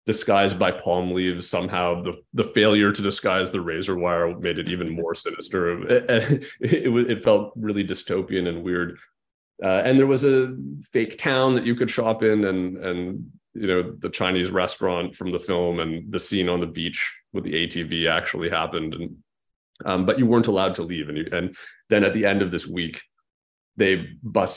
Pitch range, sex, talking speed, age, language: 85-110 Hz, male, 195 wpm, 30-49, English